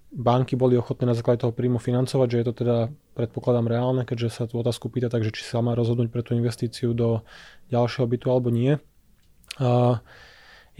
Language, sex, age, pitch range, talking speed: Slovak, male, 20-39, 120-135 Hz, 185 wpm